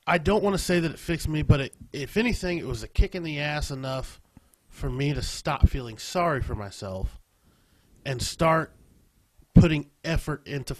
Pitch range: 110-140 Hz